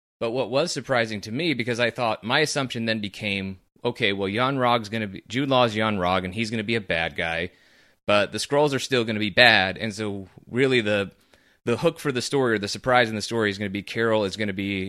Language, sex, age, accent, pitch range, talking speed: English, male, 30-49, American, 100-120 Hz, 260 wpm